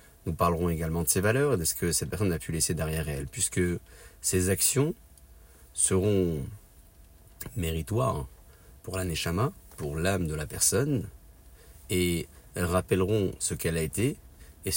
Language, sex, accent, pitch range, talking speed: French, male, French, 80-95 Hz, 155 wpm